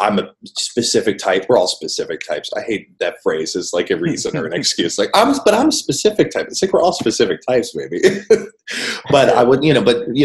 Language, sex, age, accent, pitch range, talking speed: English, male, 30-49, American, 100-155 Hz, 235 wpm